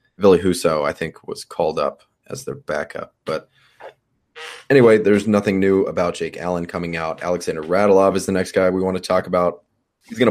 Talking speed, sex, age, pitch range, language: 190 wpm, male, 20-39, 85-100 Hz, English